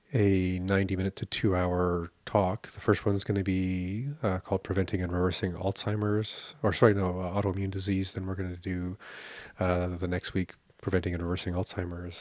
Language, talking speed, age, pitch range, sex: English, 180 wpm, 40-59, 90-100 Hz, male